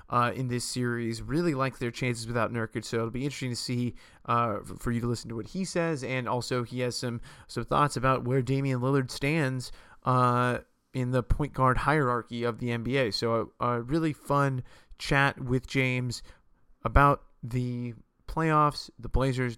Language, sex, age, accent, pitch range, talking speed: English, male, 30-49, American, 120-135 Hz, 180 wpm